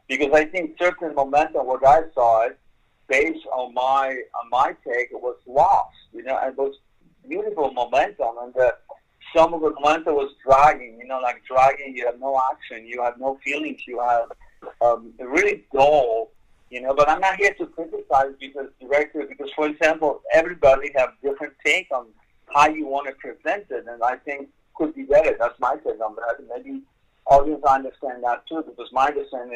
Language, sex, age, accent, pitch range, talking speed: English, male, 50-69, American, 125-165 Hz, 185 wpm